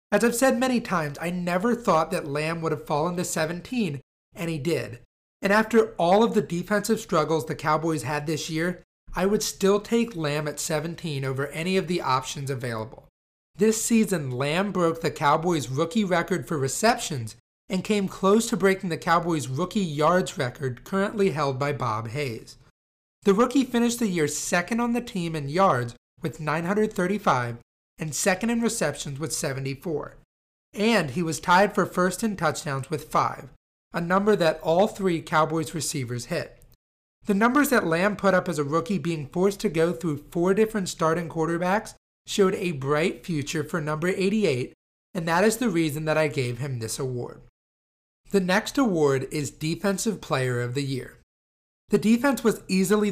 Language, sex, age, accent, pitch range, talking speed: English, male, 30-49, American, 145-200 Hz, 175 wpm